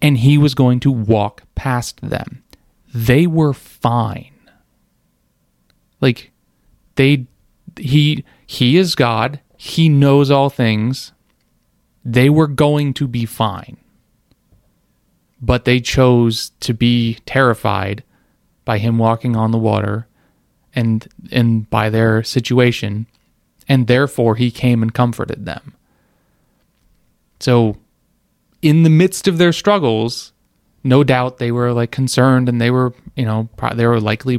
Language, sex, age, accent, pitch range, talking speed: English, male, 30-49, American, 115-145 Hz, 125 wpm